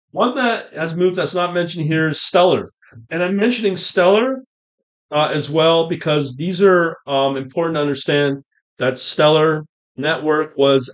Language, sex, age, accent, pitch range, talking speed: English, male, 40-59, American, 125-160 Hz, 155 wpm